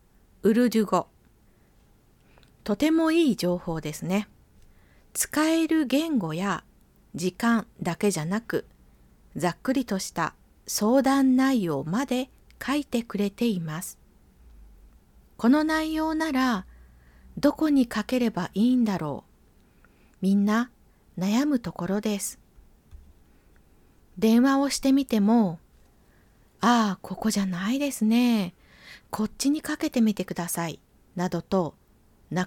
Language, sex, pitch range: Japanese, female, 155-260 Hz